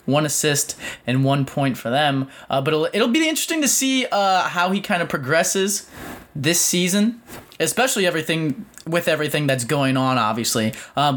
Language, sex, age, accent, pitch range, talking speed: English, male, 20-39, American, 120-155 Hz, 170 wpm